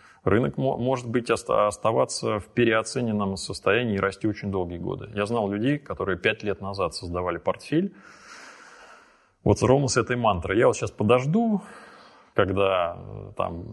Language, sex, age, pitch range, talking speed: Russian, male, 20-39, 90-115 Hz, 135 wpm